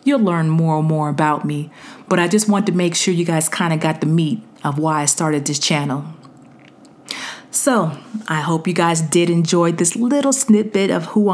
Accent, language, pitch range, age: American, English, 155-190 Hz, 40-59